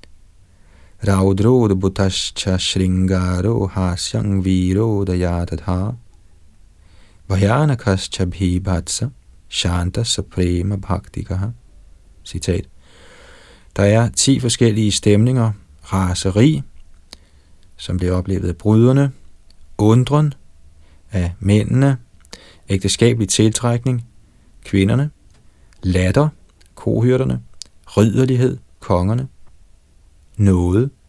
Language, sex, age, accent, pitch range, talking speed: Danish, male, 30-49, native, 90-110 Hz, 65 wpm